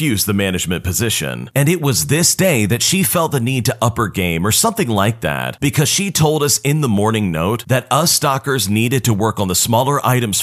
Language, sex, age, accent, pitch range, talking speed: English, male, 40-59, American, 105-140 Hz, 220 wpm